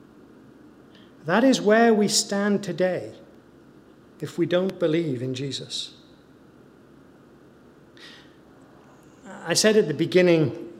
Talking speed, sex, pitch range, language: 95 wpm, male, 150-185 Hz, English